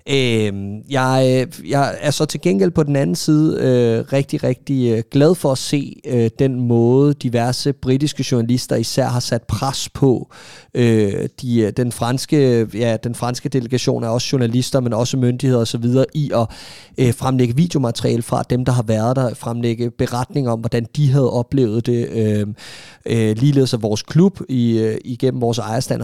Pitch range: 115-130 Hz